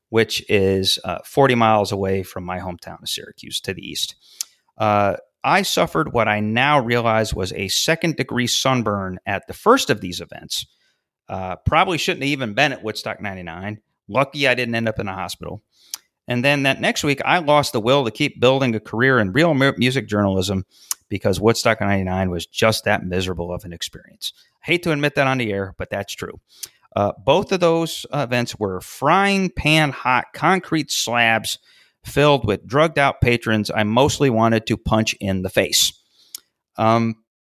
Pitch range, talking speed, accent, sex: 100-135 Hz, 180 wpm, American, male